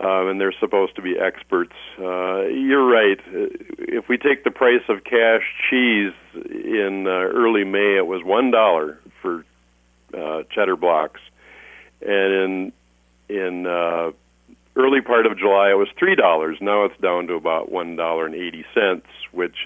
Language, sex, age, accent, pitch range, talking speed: English, male, 50-69, American, 80-115 Hz, 160 wpm